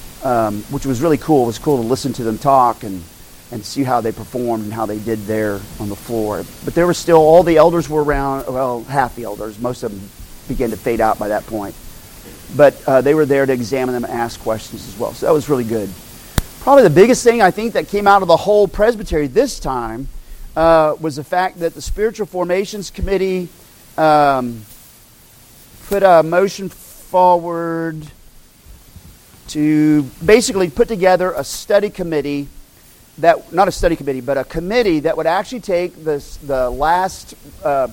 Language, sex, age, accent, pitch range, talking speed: English, male, 40-59, American, 130-175 Hz, 190 wpm